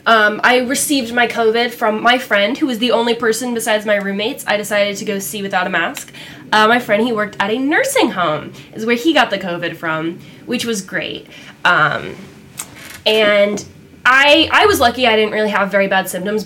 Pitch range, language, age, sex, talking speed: 195-275 Hz, English, 10-29, female, 205 wpm